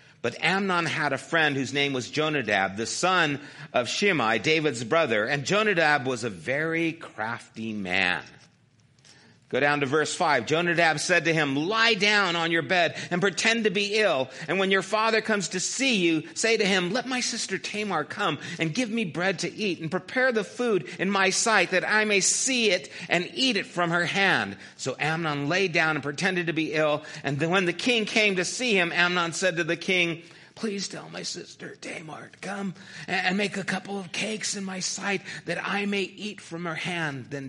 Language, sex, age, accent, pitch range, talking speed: English, male, 50-69, American, 135-185 Hz, 205 wpm